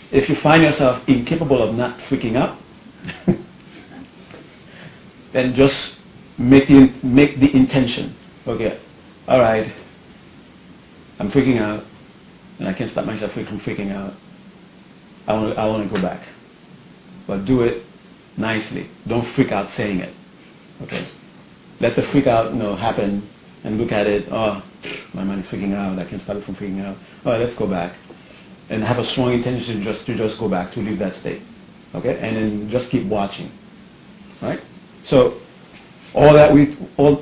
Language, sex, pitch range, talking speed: English, male, 105-130 Hz, 165 wpm